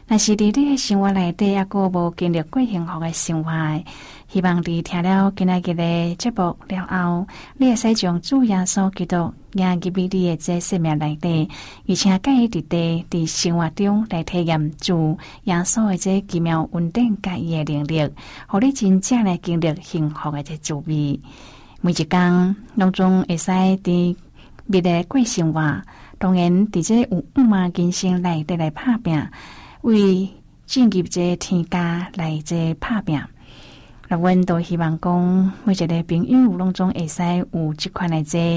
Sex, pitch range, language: female, 160-190 Hz, Chinese